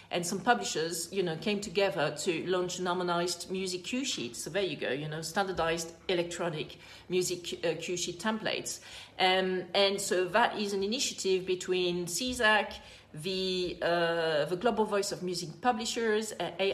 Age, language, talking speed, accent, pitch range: 40-59, English, 160 wpm, French, 165-200 Hz